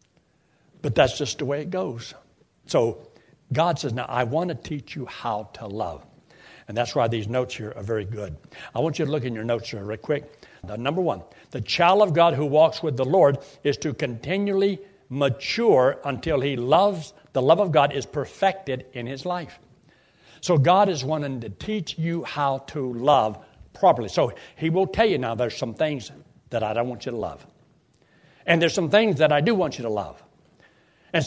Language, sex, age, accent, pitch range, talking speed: English, male, 60-79, American, 125-165 Hz, 200 wpm